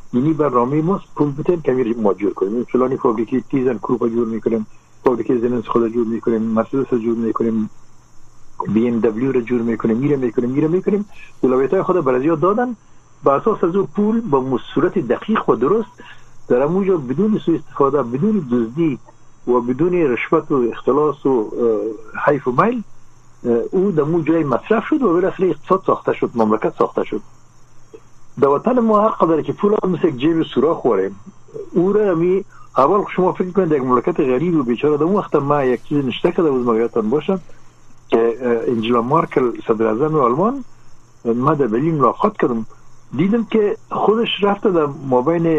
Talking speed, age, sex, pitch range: 155 wpm, 60-79, male, 125-190 Hz